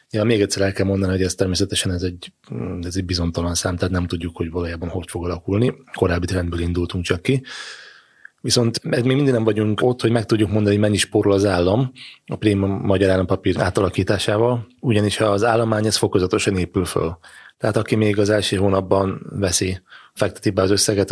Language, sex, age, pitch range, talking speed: Hungarian, male, 30-49, 90-105 Hz, 185 wpm